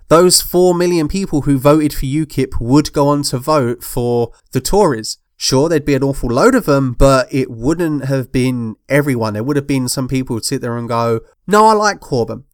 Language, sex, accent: English, male, British